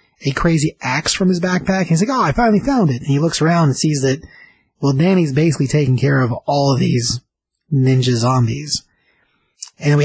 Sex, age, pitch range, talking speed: male, 30-49, 130-165 Hz, 205 wpm